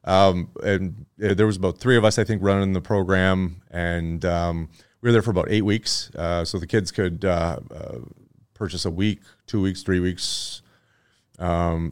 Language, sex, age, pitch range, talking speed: English, male, 30-49, 85-100 Hz, 185 wpm